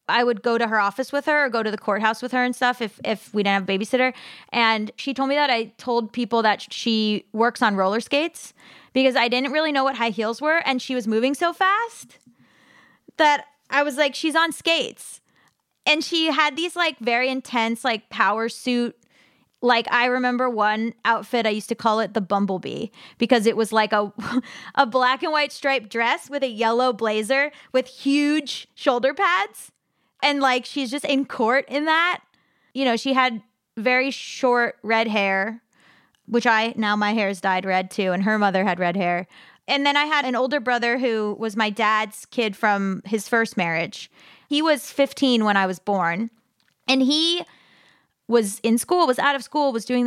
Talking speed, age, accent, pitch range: 200 wpm, 20-39, American, 215-265 Hz